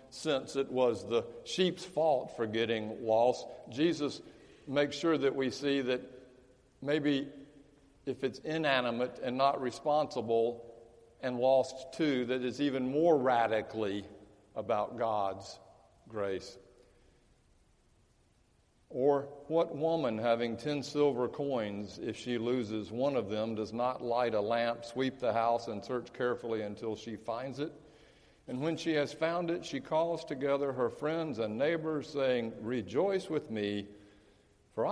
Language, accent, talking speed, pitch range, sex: English, American, 135 wpm, 110-145 Hz, male